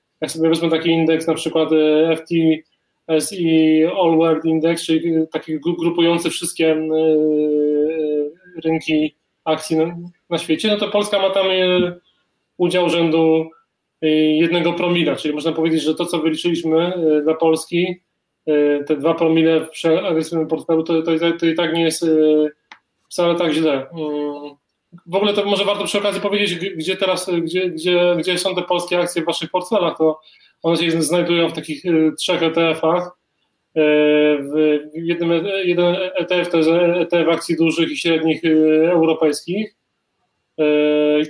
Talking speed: 130 wpm